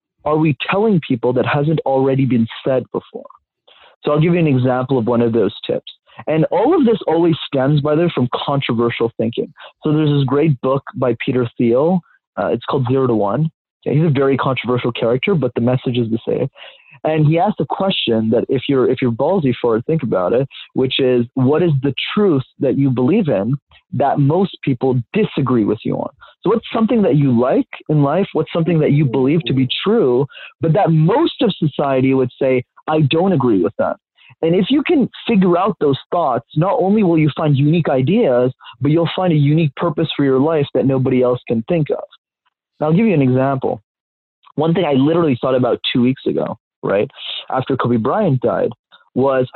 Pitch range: 130-165 Hz